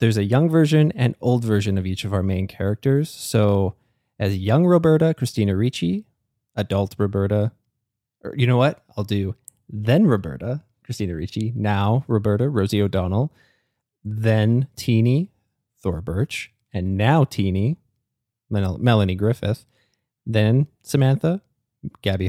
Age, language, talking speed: 20-39, English, 130 wpm